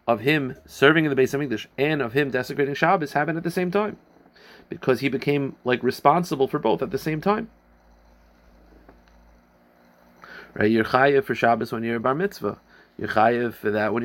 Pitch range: 115-155 Hz